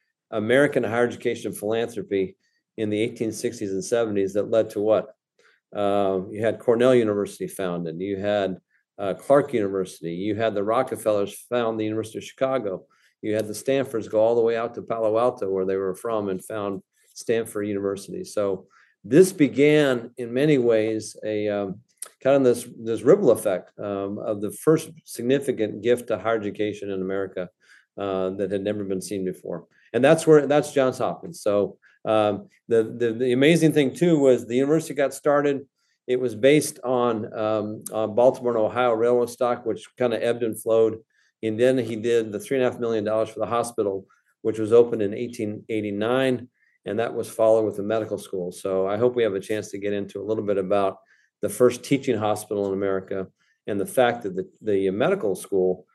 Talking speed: 190 wpm